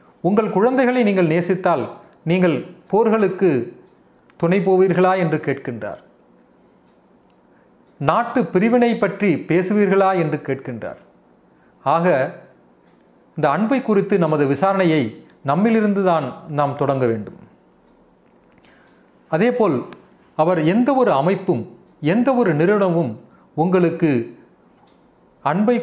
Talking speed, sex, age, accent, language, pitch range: 80 wpm, male, 40-59, native, Tamil, 155-205 Hz